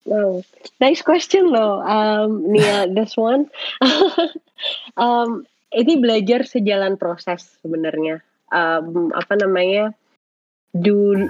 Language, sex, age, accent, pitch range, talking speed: Indonesian, female, 20-39, native, 175-220 Hz, 100 wpm